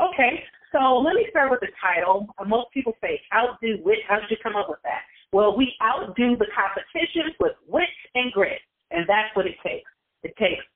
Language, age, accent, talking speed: English, 40-59, American, 200 wpm